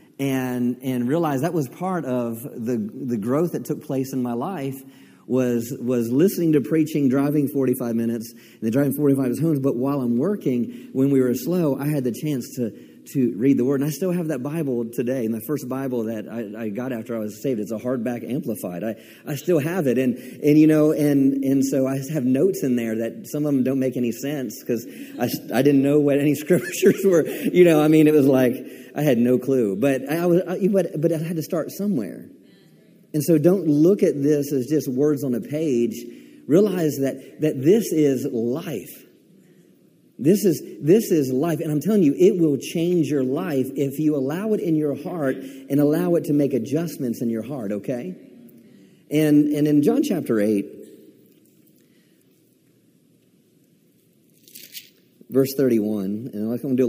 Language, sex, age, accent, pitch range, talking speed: English, male, 40-59, American, 120-150 Hz, 195 wpm